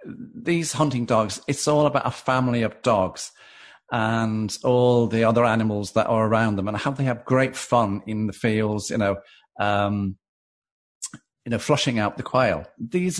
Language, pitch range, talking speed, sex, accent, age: English, 110-145 Hz, 165 wpm, male, British, 40-59